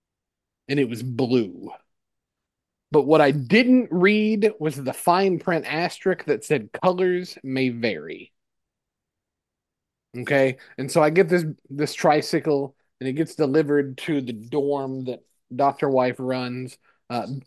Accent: American